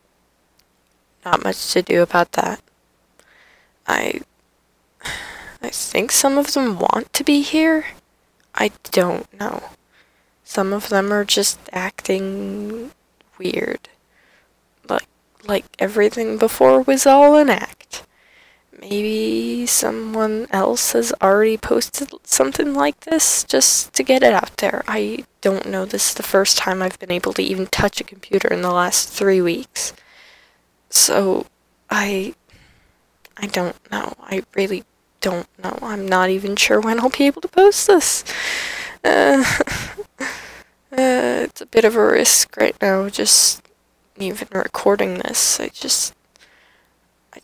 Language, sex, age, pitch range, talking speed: English, female, 10-29, 190-230 Hz, 135 wpm